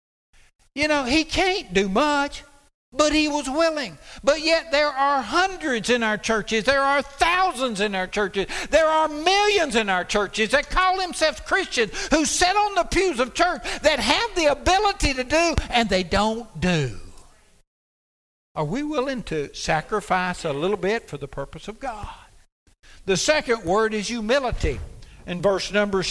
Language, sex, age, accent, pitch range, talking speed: English, male, 60-79, American, 175-245 Hz, 165 wpm